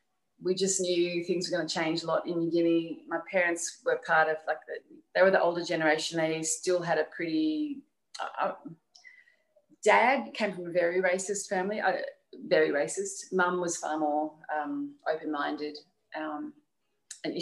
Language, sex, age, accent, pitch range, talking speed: English, female, 30-49, Australian, 160-245 Hz, 160 wpm